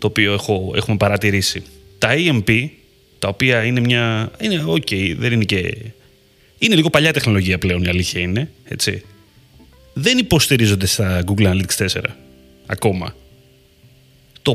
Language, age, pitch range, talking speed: Greek, 30-49, 100-135 Hz, 140 wpm